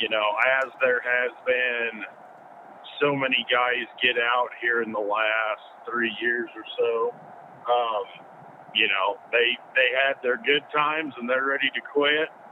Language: English